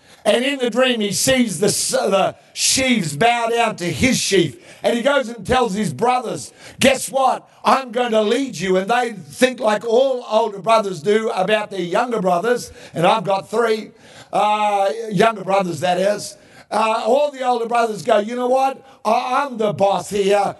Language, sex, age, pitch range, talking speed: English, male, 50-69, 210-255 Hz, 180 wpm